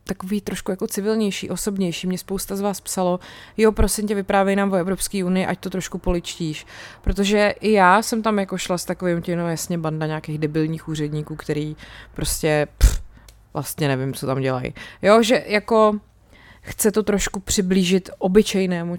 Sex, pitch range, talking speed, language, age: female, 155-185 Hz, 170 wpm, Czech, 30-49